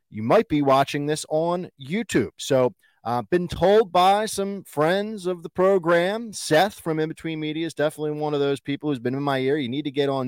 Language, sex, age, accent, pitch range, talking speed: English, male, 30-49, American, 115-155 Hz, 230 wpm